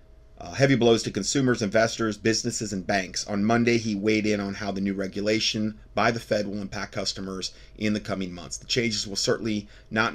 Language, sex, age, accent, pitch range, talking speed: English, male, 30-49, American, 95-110 Hz, 200 wpm